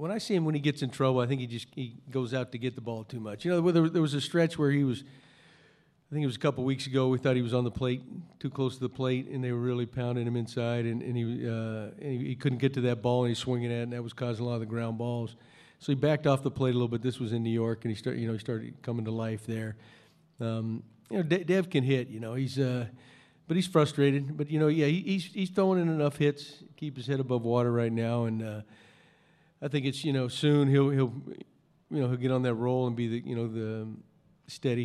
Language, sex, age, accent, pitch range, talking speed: English, male, 40-59, American, 120-145 Hz, 290 wpm